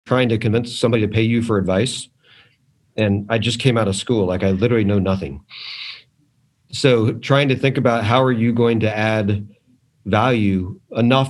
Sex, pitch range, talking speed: male, 105-130 Hz, 180 wpm